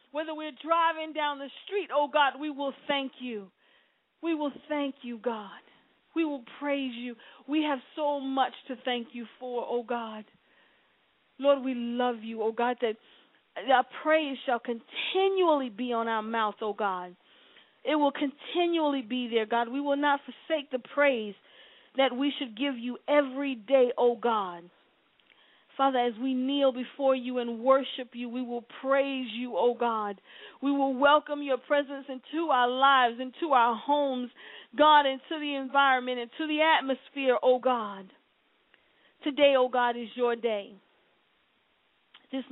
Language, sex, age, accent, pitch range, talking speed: English, female, 40-59, American, 240-295 Hz, 155 wpm